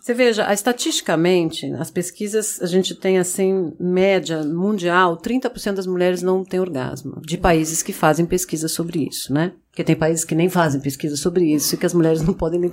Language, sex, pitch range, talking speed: Portuguese, female, 170-210 Hz, 195 wpm